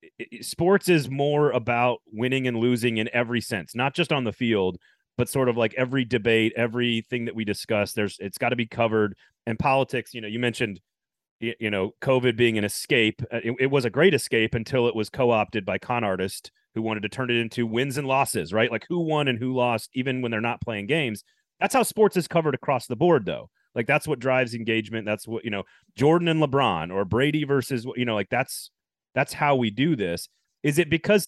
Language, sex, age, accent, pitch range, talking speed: English, male, 30-49, American, 115-140 Hz, 215 wpm